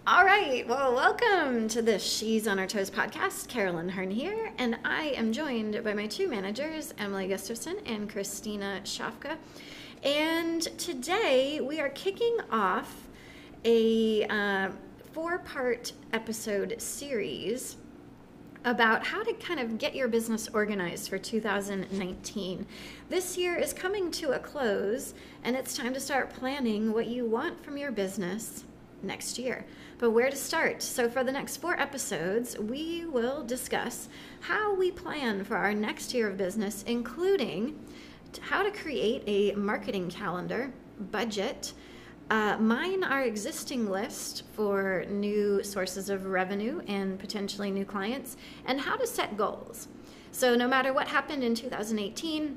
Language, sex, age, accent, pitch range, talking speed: English, female, 30-49, American, 200-285 Hz, 145 wpm